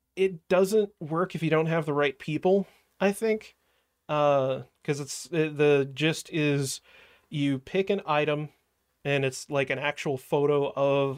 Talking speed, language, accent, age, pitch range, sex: 155 wpm, English, American, 30-49, 130-150 Hz, male